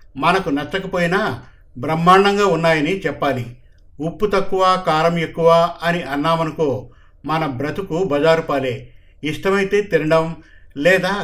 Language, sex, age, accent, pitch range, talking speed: Telugu, male, 50-69, native, 140-175 Hz, 90 wpm